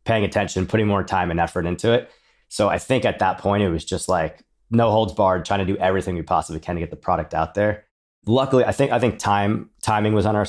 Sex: male